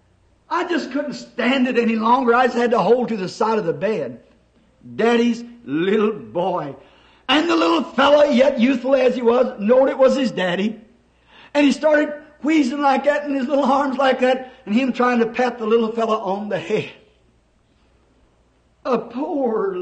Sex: male